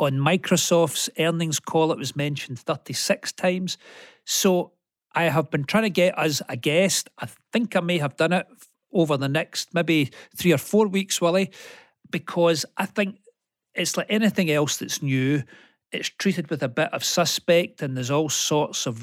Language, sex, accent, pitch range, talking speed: English, male, British, 135-180 Hz, 175 wpm